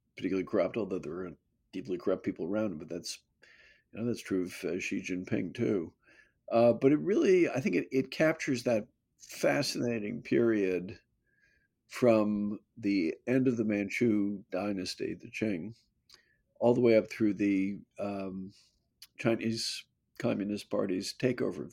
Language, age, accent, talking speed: English, 50-69, American, 150 wpm